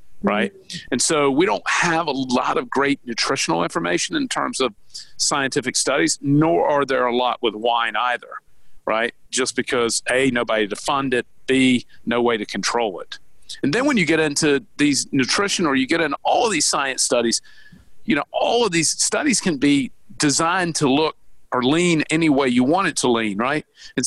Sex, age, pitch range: male, 50-69, 120-160 Hz